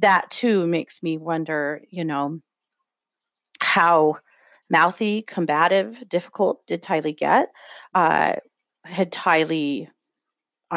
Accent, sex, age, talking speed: American, female, 40-59, 95 wpm